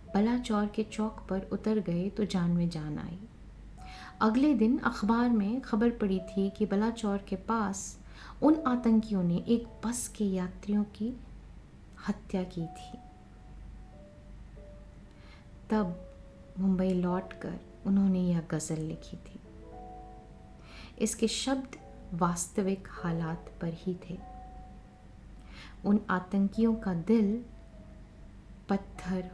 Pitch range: 175-225 Hz